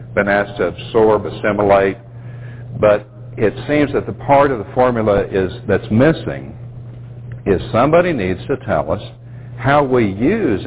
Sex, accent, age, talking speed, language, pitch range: male, American, 60-79, 145 wpm, English, 105-120 Hz